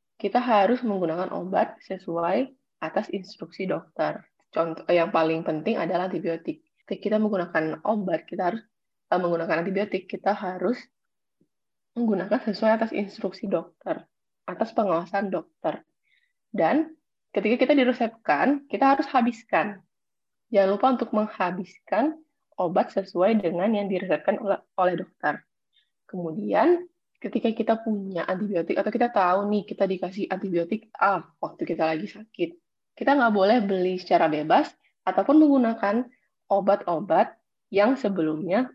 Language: Indonesian